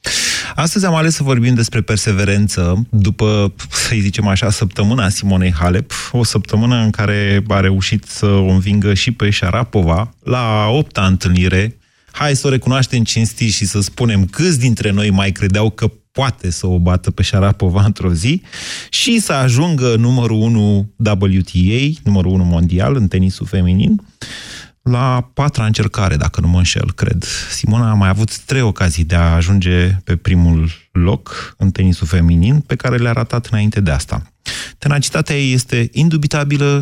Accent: native